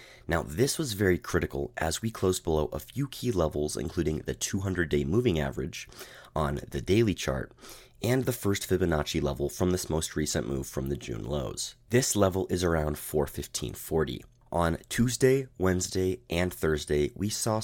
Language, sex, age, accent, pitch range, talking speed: English, male, 30-49, American, 75-110 Hz, 165 wpm